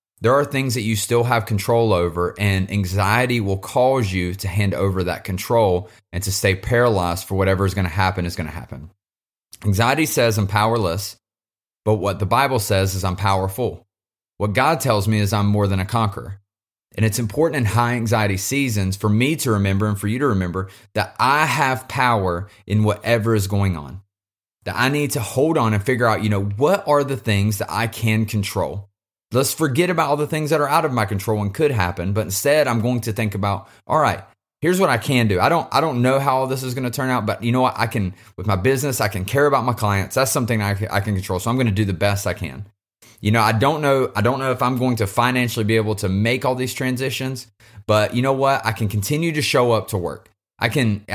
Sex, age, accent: male, 30-49, American